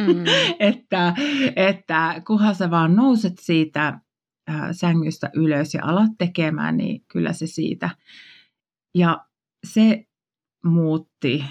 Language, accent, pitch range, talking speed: Finnish, native, 155-200 Hz, 100 wpm